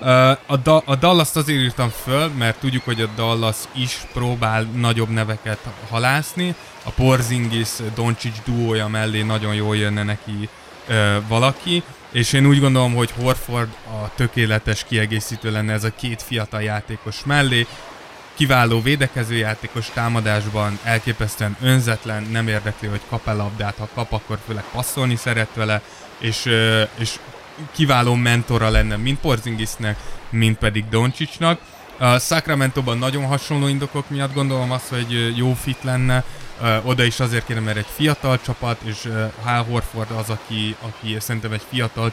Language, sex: Hungarian, male